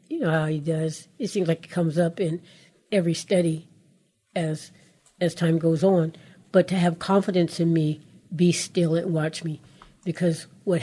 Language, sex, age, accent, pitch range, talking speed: English, female, 60-79, American, 160-185 Hz, 175 wpm